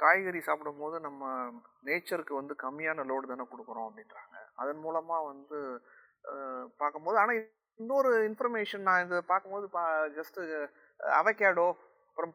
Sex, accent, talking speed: male, native, 115 wpm